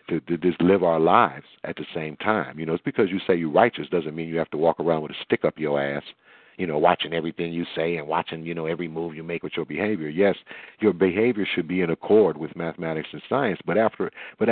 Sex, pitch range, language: male, 85-140 Hz, English